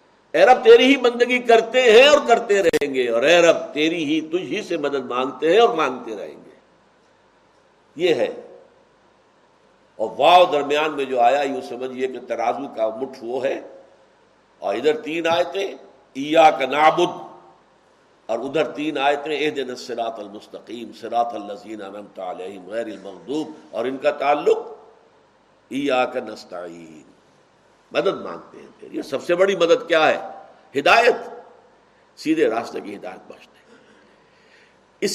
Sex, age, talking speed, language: male, 60-79, 130 wpm, Urdu